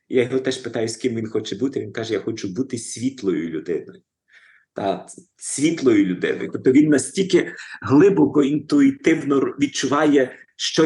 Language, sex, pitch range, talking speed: Ukrainian, male, 105-125 Hz, 145 wpm